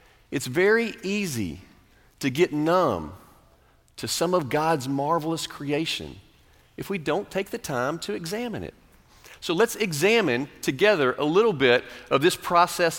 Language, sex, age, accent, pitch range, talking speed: English, male, 40-59, American, 145-200 Hz, 145 wpm